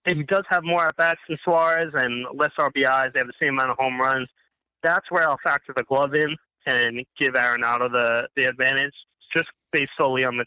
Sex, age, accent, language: male, 20-39, American, English